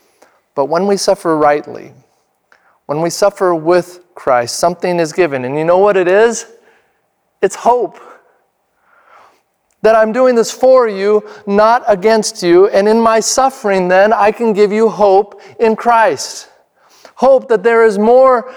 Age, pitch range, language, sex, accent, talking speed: 40-59, 190-235 Hz, English, male, American, 150 wpm